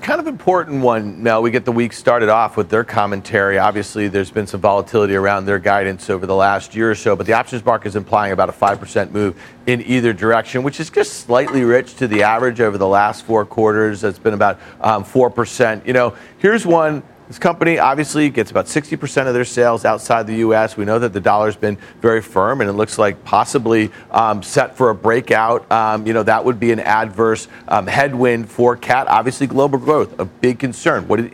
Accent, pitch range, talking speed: American, 110-140 Hz, 225 wpm